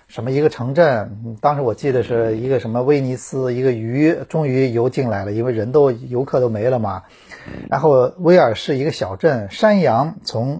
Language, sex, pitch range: Chinese, male, 120-170 Hz